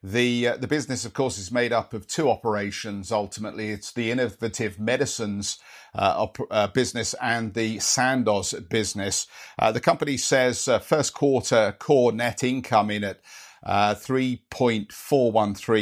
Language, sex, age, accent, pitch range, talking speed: English, male, 50-69, British, 105-140 Hz, 145 wpm